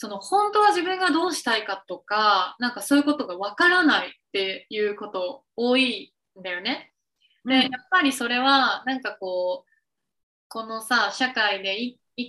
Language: Japanese